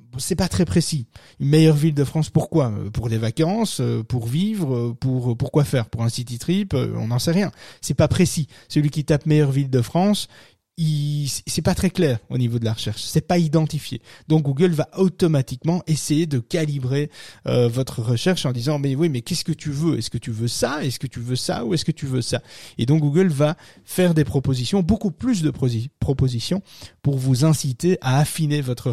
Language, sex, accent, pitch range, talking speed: French, male, French, 125-160 Hz, 215 wpm